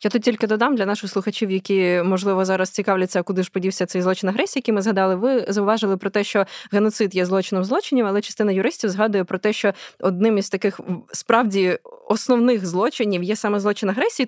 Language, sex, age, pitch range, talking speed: Ukrainian, female, 20-39, 185-230 Hz, 195 wpm